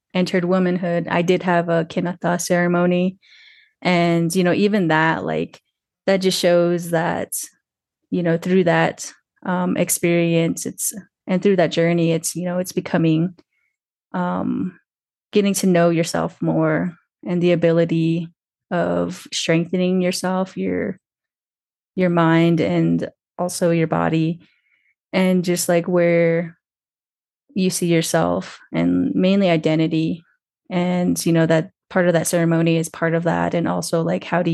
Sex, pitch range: female, 165-185 Hz